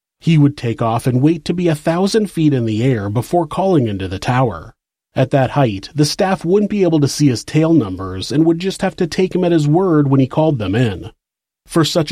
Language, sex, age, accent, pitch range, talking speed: English, male, 30-49, American, 115-165 Hz, 245 wpm